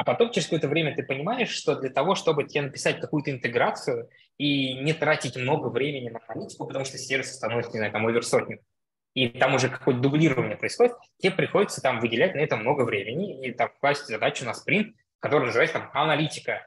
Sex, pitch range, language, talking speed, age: male, 130-170 Hz, Russian, 190 wpm, 20-39